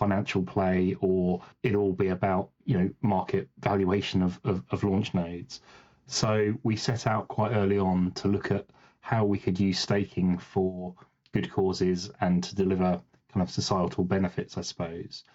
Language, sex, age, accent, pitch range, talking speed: English, male, 30-49, British, 90-100 Hz, 170 wpm